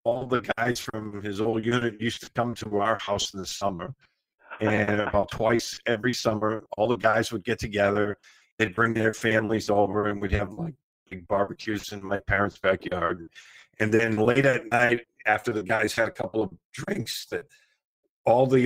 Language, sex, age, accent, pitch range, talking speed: English, male, 50-69, American, 105-130 Hz, 185 wpm